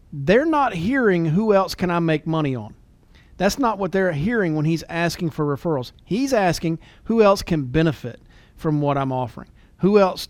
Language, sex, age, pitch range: English, male, 40-59, 145-190 Hz